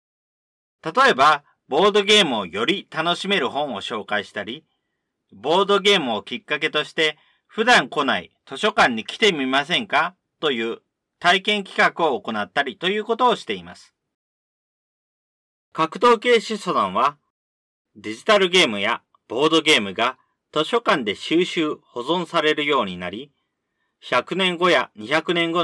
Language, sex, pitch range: Japanese, male, 135-200 Hz